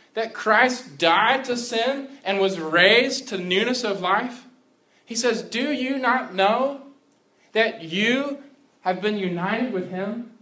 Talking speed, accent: 145 wpm, American